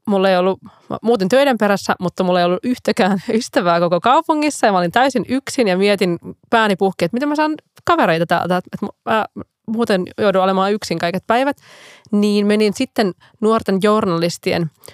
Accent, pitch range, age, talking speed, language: native, 175-215 Hz, 20-39, 175 wpm, Finnish